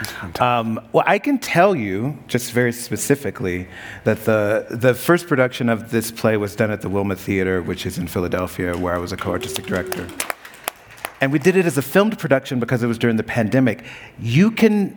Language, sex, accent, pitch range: English, male, American, 110-140 Hz